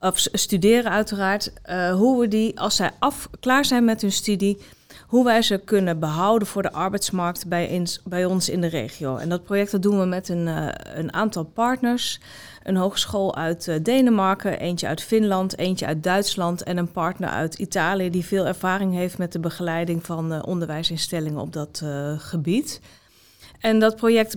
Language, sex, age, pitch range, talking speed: Dutch, female, 30-49, 170-205 Hz, 165 wpm